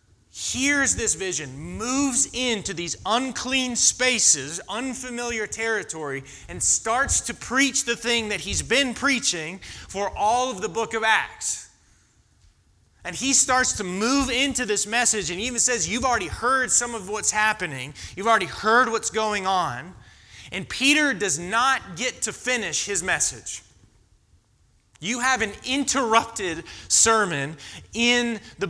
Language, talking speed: English, 140 wpm